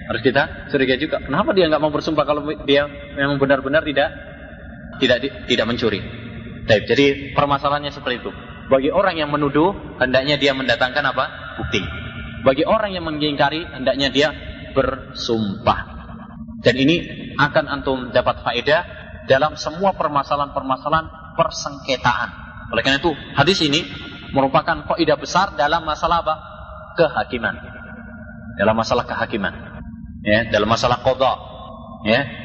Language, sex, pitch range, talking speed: Malay, male, 115-150 Hz, 125 wpm